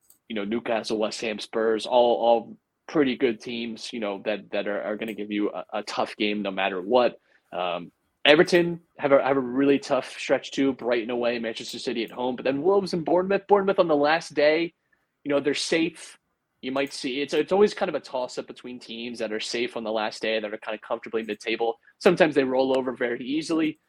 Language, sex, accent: English, male, American